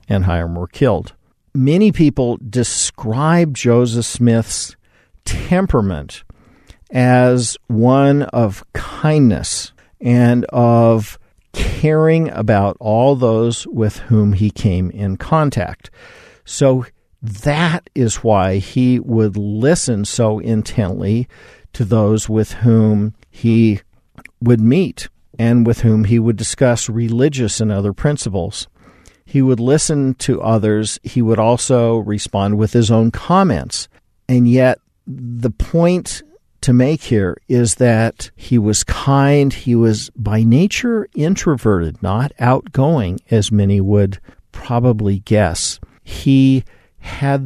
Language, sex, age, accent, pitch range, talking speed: English, male, 50-69, American, 105-130 Hz, 115 wpm